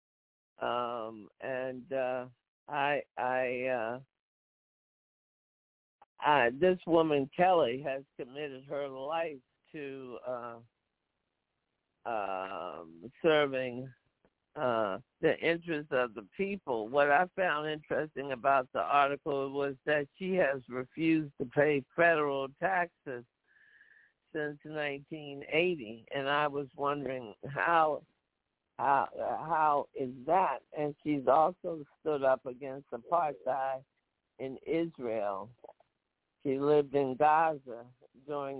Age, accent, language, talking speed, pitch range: 60-79, American, English, 105 wpm, 130-150 Hz